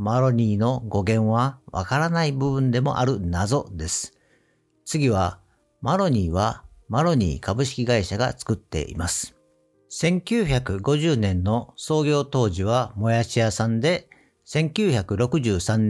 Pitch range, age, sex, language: 105-150 Hz, 50-69, male, Japanese